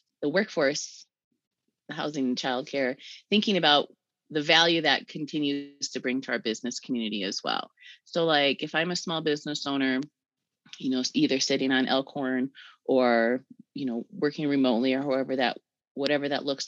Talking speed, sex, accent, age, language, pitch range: 160 wpm, female, American, 30-49, English, 125-150 Hz